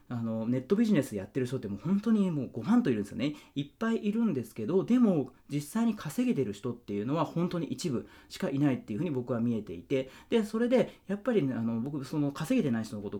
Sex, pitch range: male, 125-210 Hz